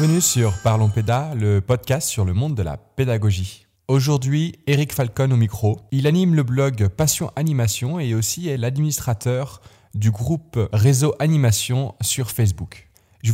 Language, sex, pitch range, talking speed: French, male, 105-140 Hz, 155 wpm